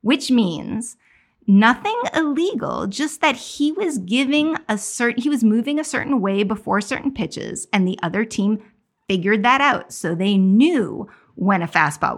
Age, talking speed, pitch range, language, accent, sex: 20-39, 165 wpm, 195-255 Hz, English, American, female